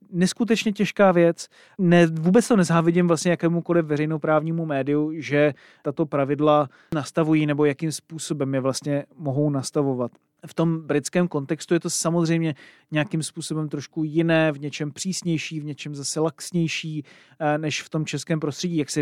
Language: Czech